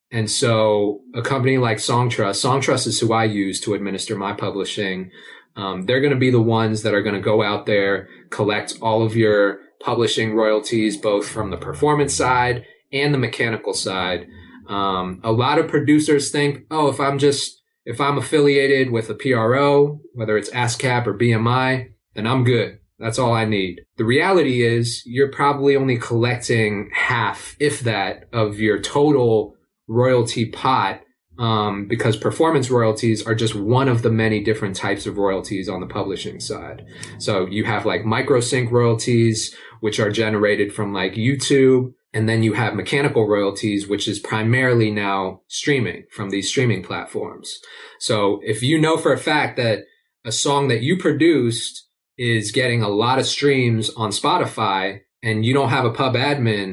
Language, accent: English, American